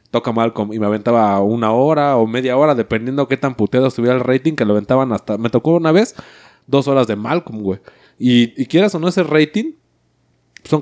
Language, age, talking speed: Spanish, 20-39, 210 wpm